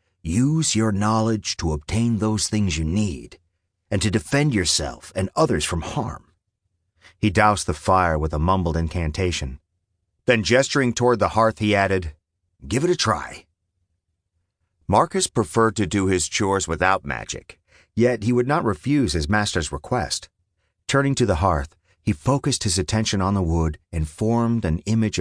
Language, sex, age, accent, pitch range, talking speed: English, male, 40-59, American, 85-110 Hz, 160 wpm